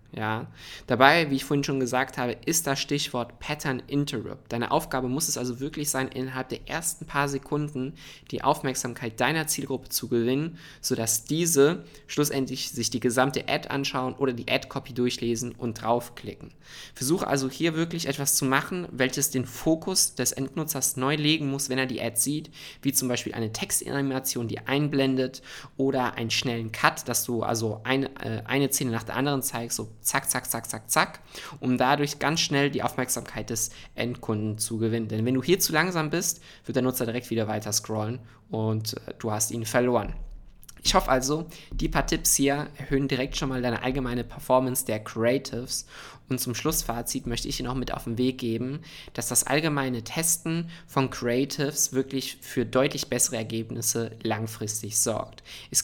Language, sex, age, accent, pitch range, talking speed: German, male, 20-39, German, 120-140 Hz, 175 wpm